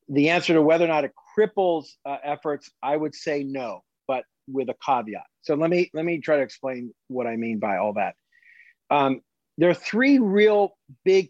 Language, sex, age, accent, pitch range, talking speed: English, male, 40-59, American, 135-170 Hz, 200 wpm